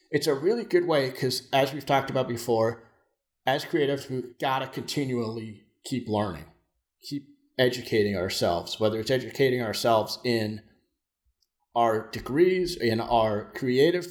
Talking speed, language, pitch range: 135 wpm, English, 115-170 Hz